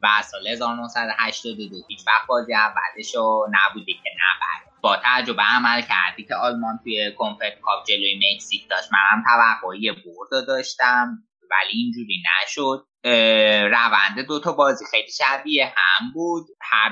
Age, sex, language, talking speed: 20-39, male, Persian, 130 wpm